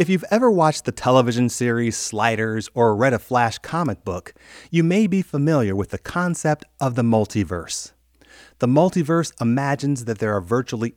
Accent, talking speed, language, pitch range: American, 170 wpm, English, 105-150 Hz